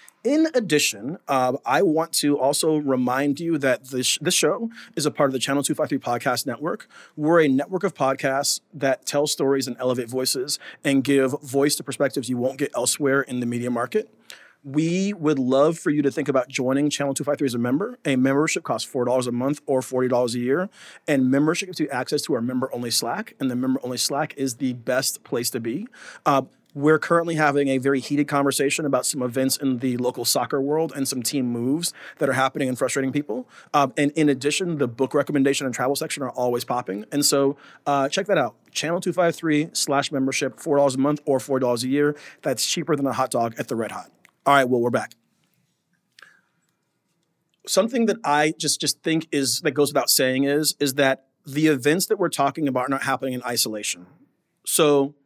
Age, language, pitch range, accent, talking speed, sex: 40-59, English, 130-150 Hz, American, 200 wpm, male